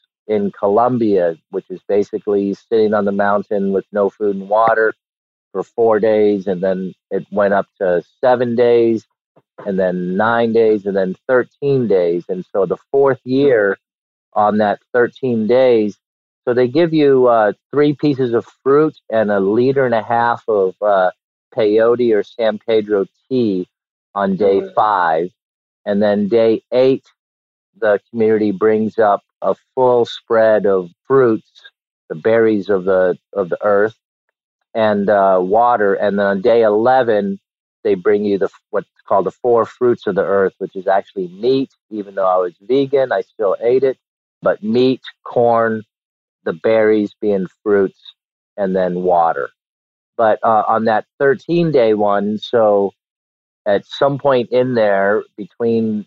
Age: 50-69